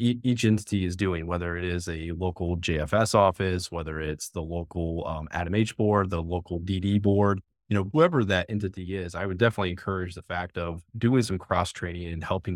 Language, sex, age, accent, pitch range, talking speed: English, male, 30-49, American, 85-105 Hz, 200 wpm